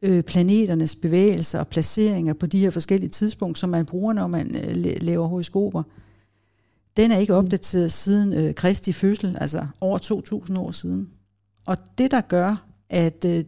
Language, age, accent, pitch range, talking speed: Danish, 60-79, native, 155-205 Hz, 145 wpm